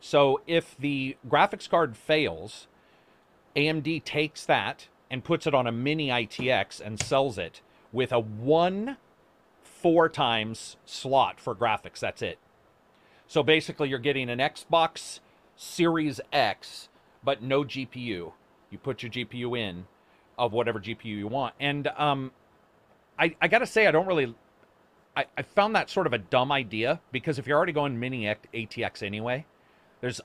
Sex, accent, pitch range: male, American, 115-145 Hz